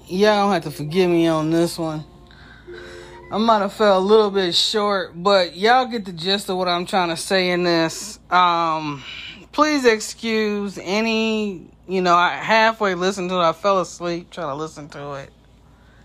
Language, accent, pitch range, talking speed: English, American, 145-185 Hz, 185 wpm